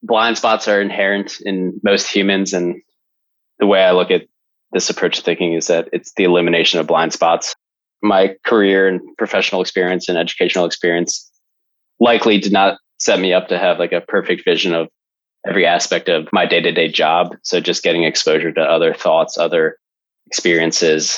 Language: English